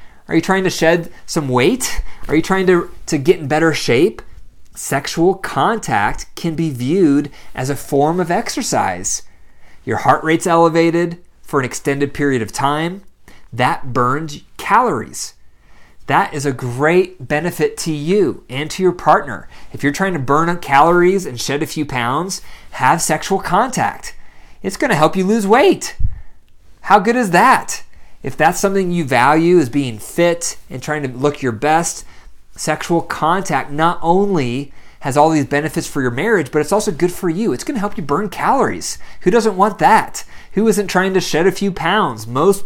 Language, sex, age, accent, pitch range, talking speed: English, male, 30-49, American, 140-180 Hz, 175 wpm